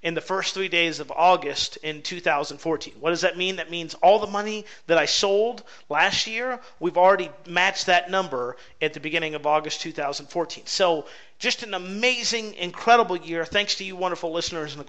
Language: English